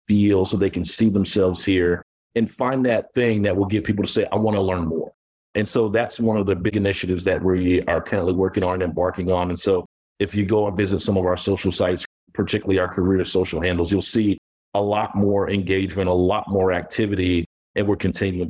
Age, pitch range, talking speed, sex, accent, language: 40-59, 90-105 Hz, 225 wpm, male, American, English